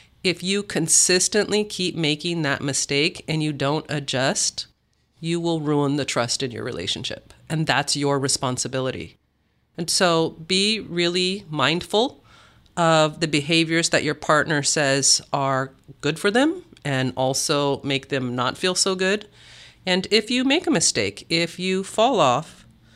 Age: 40-59